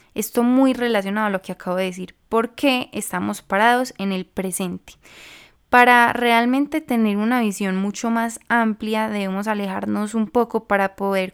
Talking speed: 160 wpm